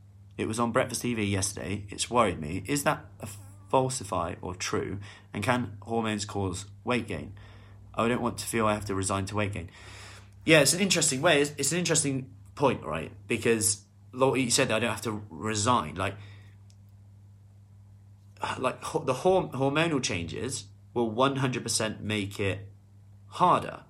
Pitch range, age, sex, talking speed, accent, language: 100-125 Hz, 30-49, male, 155 wpm, British, English